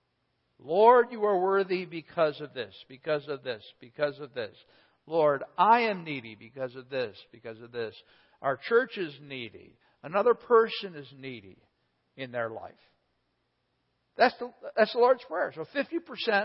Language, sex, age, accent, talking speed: English, male, 60-79, American, 145 wpm